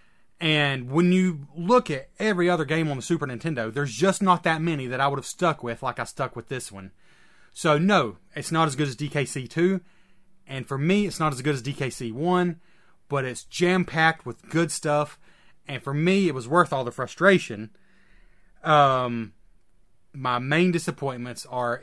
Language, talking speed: English, 180 wpm